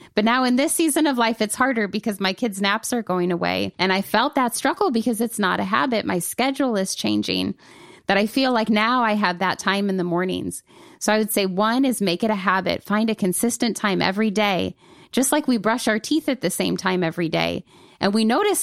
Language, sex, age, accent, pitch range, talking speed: English, female, 20-39, American, 190-240 Hz, 235 wpm